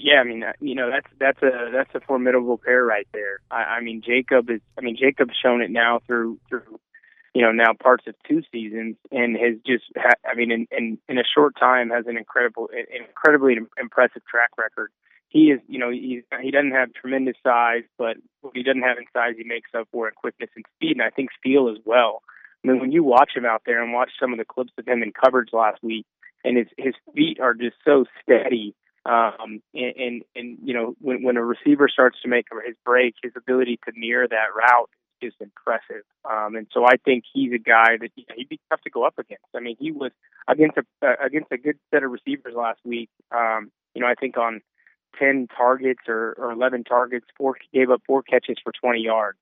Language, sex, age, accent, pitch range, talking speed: English, male, 20-39, American, 115-130 Hz, 225 wpm